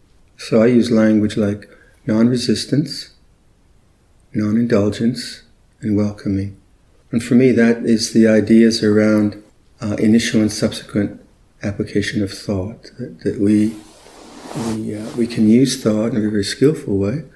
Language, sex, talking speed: English, male, 130 wpm